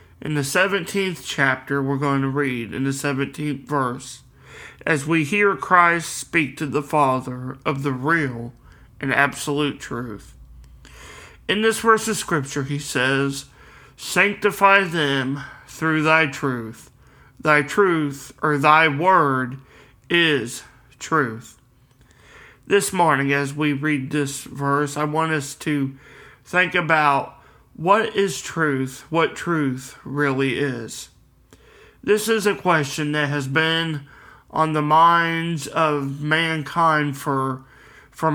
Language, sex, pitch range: English, male, 135-165 Hz